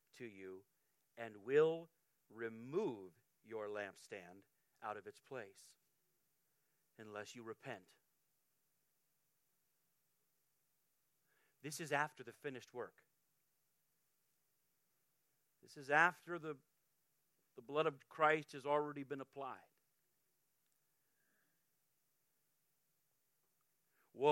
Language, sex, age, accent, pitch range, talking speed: English, male, 40-59, American, 150-200 Hz, 80 wpm